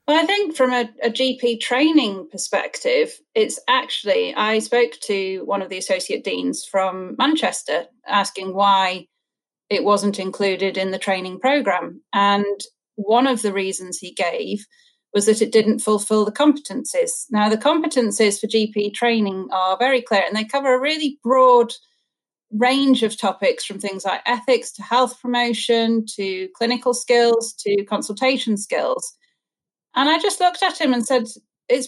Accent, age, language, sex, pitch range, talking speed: British, 30-49, English, female, 210-270 Hz, 160 wpm